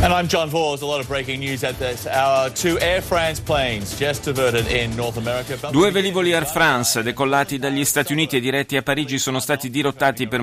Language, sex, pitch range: Italian, male, 115-140 Hz